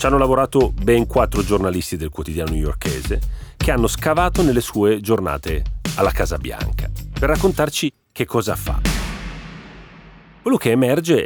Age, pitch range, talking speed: 40-59, 85-125 Hz, 140 wpm